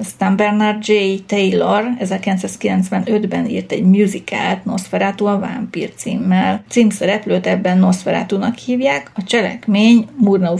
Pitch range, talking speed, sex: 190-225 Hz, 110 wpm, female